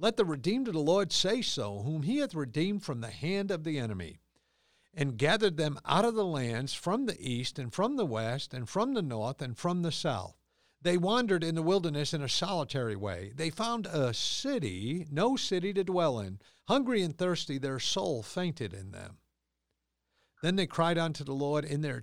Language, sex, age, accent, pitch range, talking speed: English, male, 50-69, American, 115-165 Hz, 200 wpm